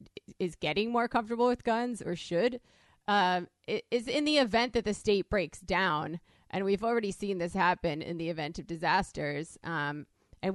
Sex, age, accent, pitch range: female, 20-39, American, 175-230 Hz